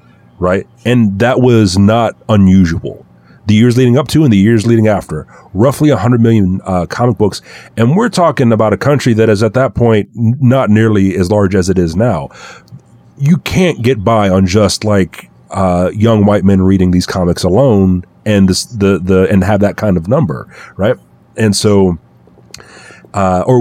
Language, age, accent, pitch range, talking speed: English, 30-49, American, 95-120 Hz, 180 wpm